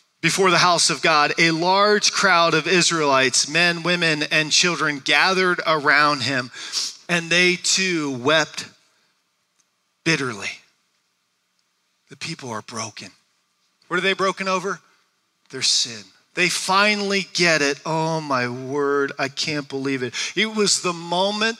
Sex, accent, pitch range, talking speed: male, American, 165-225 Hz, 135 wpm